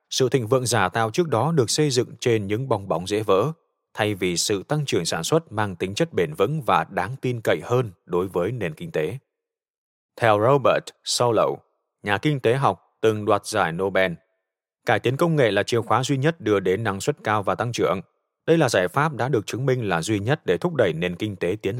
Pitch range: 95-135 Hz